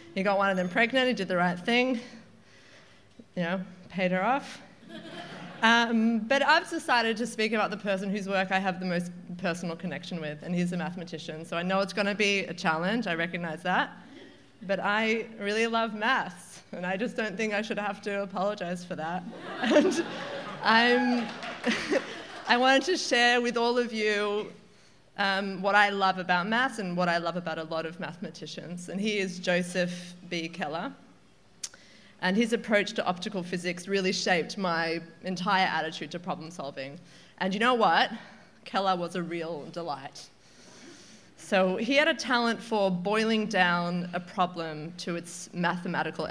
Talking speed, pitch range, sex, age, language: 170 wpm, 175-220 Hz, female, 20-39, English